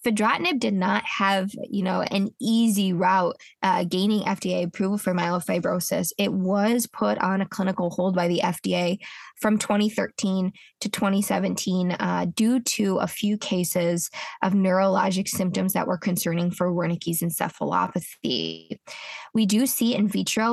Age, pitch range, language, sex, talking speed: 20-39, 185-210 Hz, English, female, 145 wpm